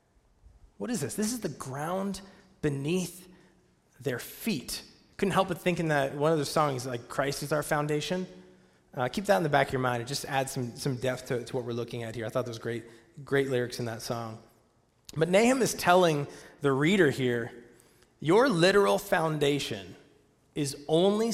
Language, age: English, 30-49